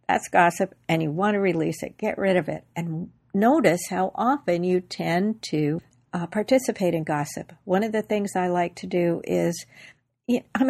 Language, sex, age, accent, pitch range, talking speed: English, female, 60-79, American, 175-215 Hz, 185 wpm